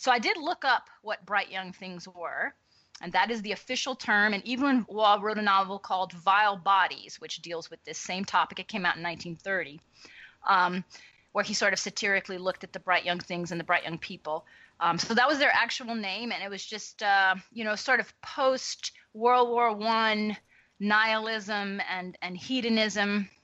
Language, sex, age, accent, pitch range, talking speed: English, female, 30-49, American, 185-225 Hz, 195 wpm